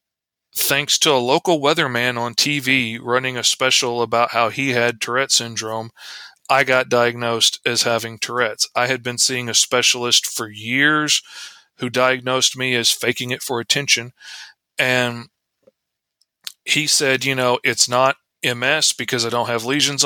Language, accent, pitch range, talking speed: English, American, 120-140 Hz, 155 wpm